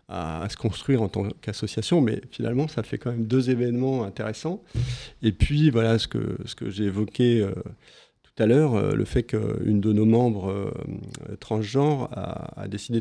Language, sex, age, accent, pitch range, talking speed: French, male, 40-59, French, 110-140 Hz, 185 wpm